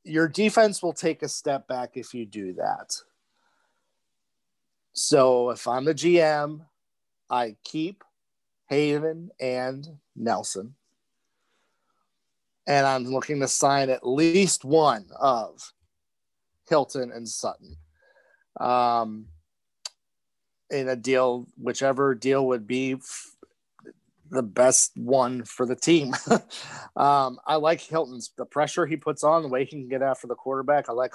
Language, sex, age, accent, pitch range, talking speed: English, male, 30-49, American, 125-155 Hz, 130 wpm